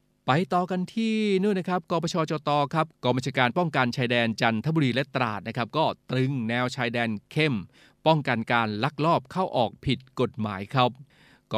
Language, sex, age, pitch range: Thai, male, 20-39, 120-145 Hz